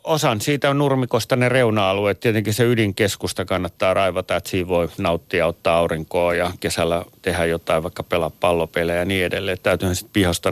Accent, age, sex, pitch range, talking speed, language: native, 30-49, male, 90-110 Hz, 170 wpm, Finnish